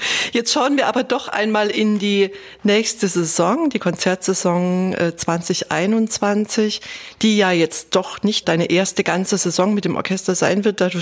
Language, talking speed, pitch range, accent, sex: German, 160 wpm, 170-215 Hz, German, female